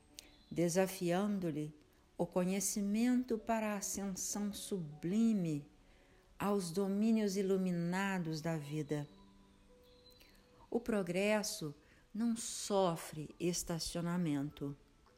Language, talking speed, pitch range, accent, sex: Portuguese, 65 wpm, 150-210 Hz, Brazilian, female